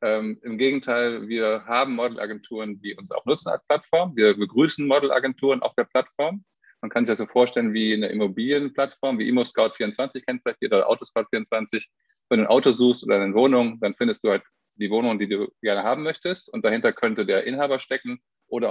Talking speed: 195 wpm